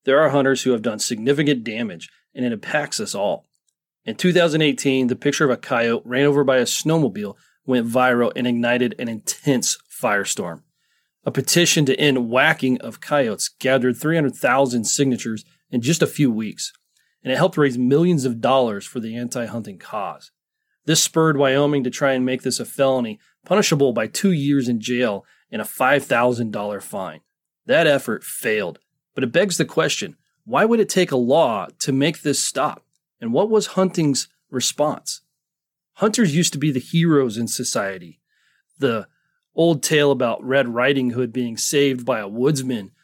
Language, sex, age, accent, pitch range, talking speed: English, male, 30-49, American, 125-160 Hz, 170 wpm